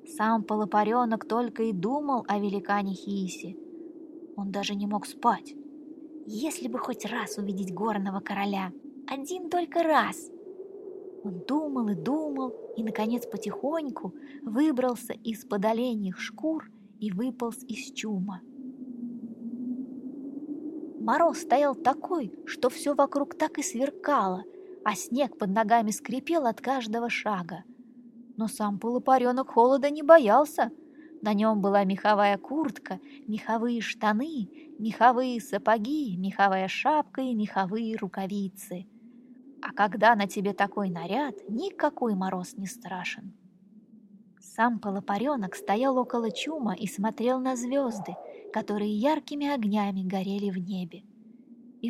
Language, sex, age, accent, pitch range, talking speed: Russian, female, 20-39, native, 210-285 Hz, 115 wpm